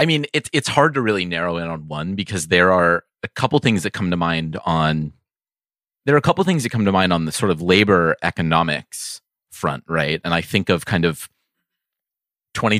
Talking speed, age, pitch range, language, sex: 215 wpm, 30-49, 80-110 Hz, English, male